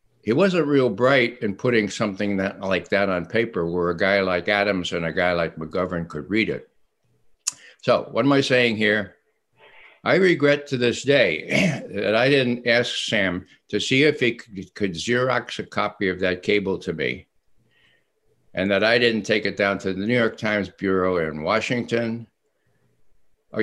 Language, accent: English, American